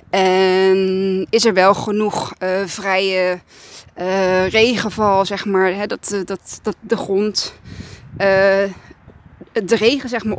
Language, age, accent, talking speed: Dutch, 20-39, Dutch, 125 wpm